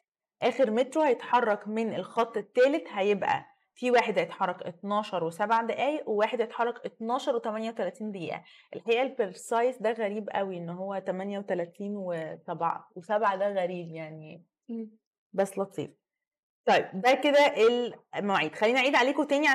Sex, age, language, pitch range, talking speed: female, 20-39, Arabic, 195-265 Hz, 135 wpm